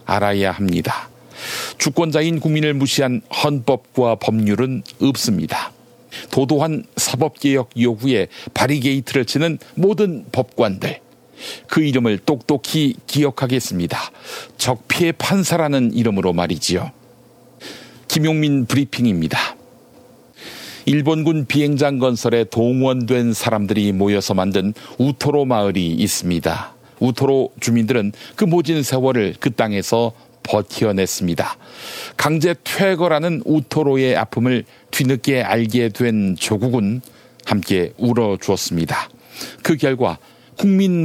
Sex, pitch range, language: male, 110-145 Hz, Korean